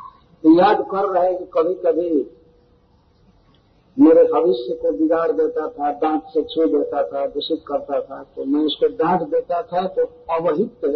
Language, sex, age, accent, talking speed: Hindi, male, 50-69, native, 165 wpm